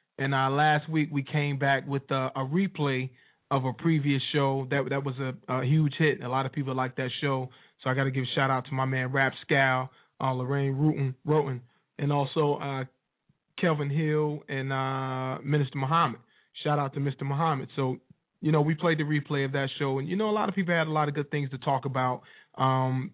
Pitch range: 135-150 Hz